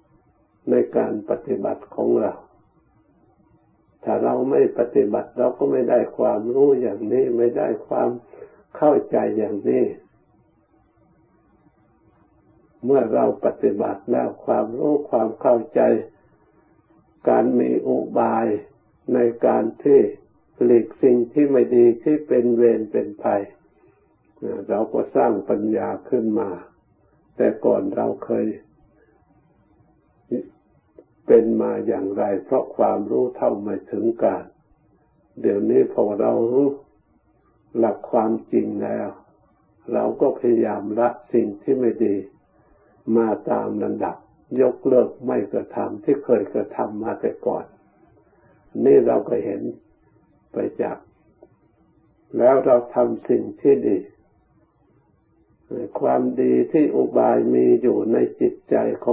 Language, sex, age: Thai, male, 60-79